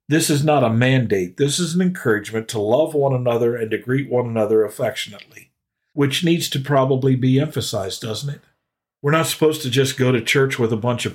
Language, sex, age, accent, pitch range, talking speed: English, male, 50-69, American, 110-135 Hz, 210 wpm